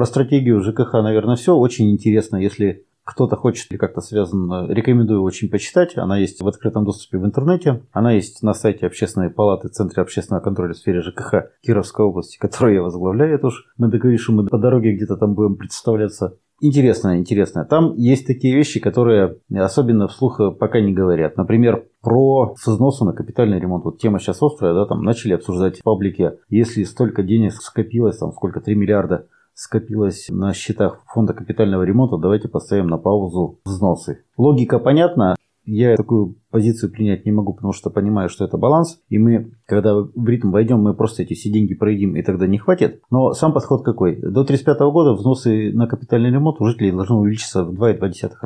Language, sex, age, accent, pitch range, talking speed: Russian, male, 30-49, native, 100-120 Hz, 180 wpm